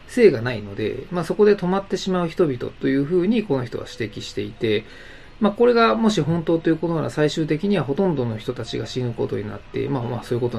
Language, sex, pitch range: Japanese, male, 120-185 Hz